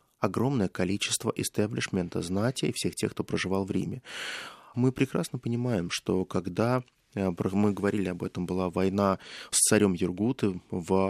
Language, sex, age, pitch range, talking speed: Russian, male, 20-39, 100-125 Hz, 135 wpm